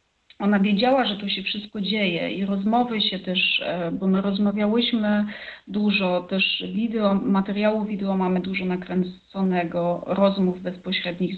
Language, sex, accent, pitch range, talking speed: Polish, female, native, 185-210 Hz, 120 wpm